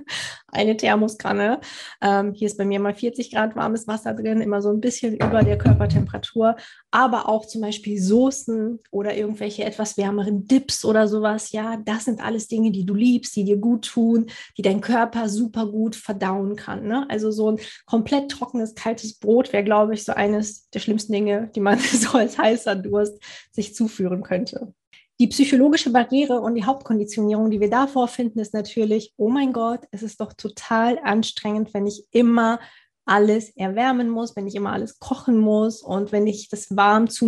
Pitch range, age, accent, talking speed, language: 210-235 Hz, 20-39, German, 180 wpm, German